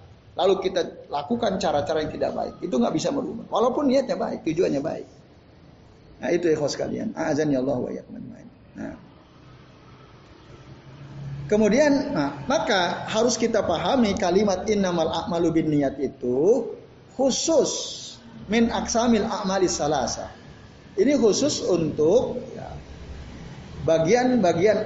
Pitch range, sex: 145-215 Hz, male